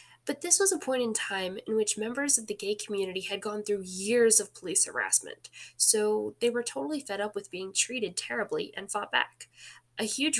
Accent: American